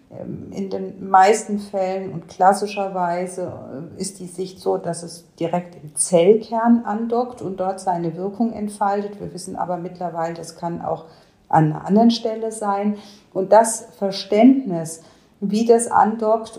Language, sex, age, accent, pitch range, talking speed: German, female, 50-69, German, 170-210 Hz, 140 wpm